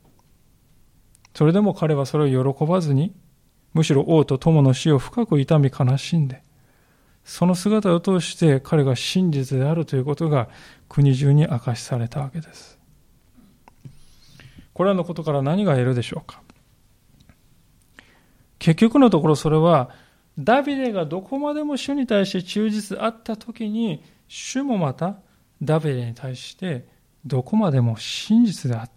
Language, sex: Japanese, male